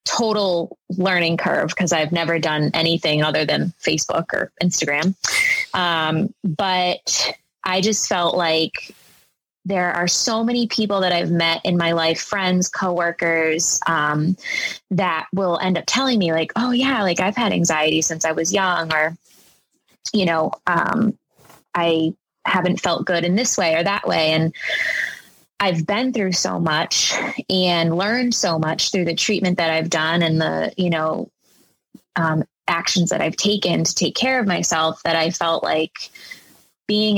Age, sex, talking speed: 20-39, female, 160 wpm